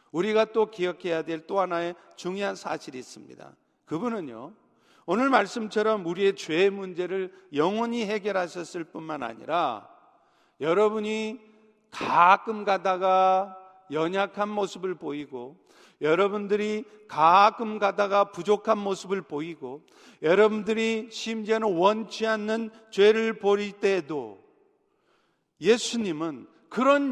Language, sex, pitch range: Korean, male, 180-225 Hz